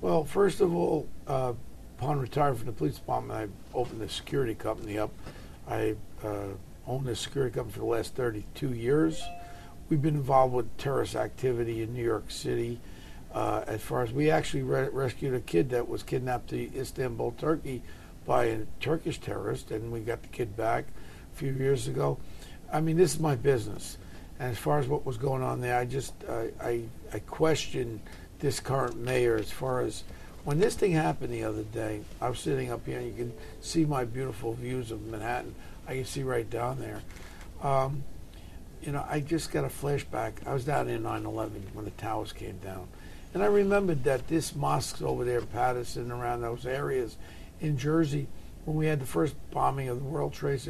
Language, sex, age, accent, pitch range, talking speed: English, male, 50-69, American, 110-140 Hz, 195 wpm